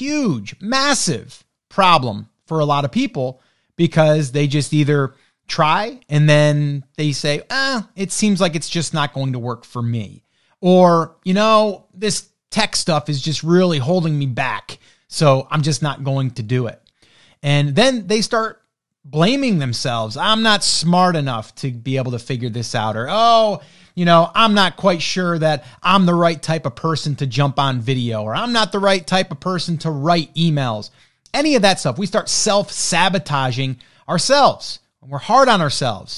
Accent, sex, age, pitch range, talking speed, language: American, male, 30-49, 140-200 Hz, 180 wpm, English